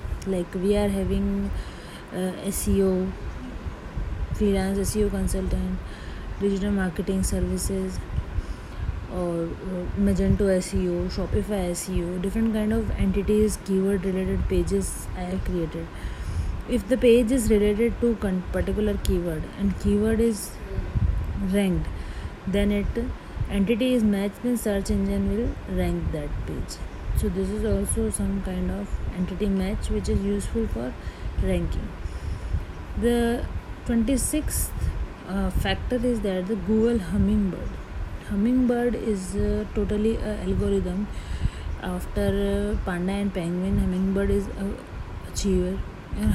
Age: 20-39